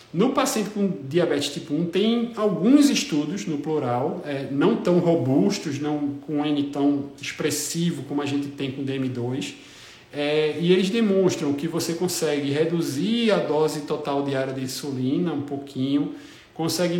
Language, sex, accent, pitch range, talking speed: Portuguese, male, Brazilian, 145-195 Hz, 150 wpm